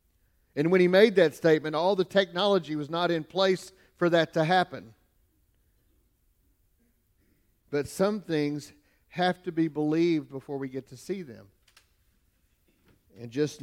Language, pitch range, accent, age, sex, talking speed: English, 120-195 Hz, American, 50-69, male, 140 wpm